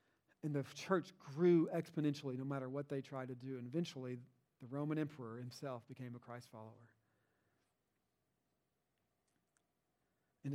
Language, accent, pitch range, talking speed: English, American, 135-165 Hz, 130 wpm